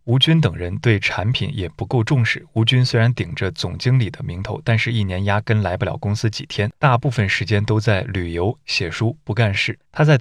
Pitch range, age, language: 105-125 Hz, 20-39, Chinese